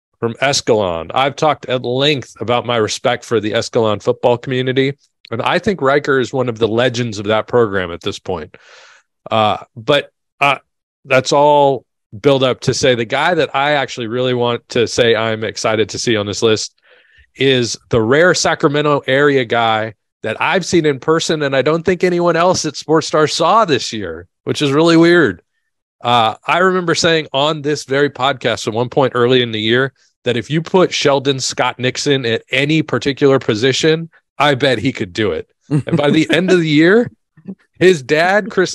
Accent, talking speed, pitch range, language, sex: American, 190 wpm, 120-160 Hz, English, male